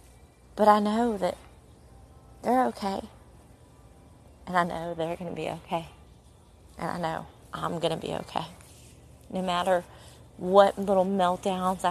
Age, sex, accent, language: 30-49, female, American, English